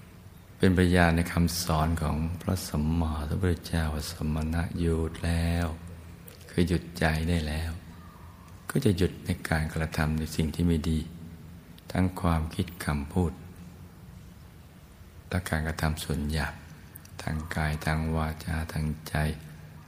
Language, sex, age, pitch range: Thai, male, 60-79, 80-90 Hz